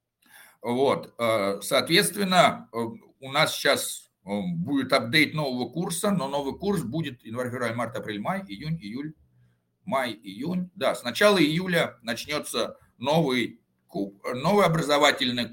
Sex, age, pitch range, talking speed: male, 50-69, 115-170 Hz, 115 wpm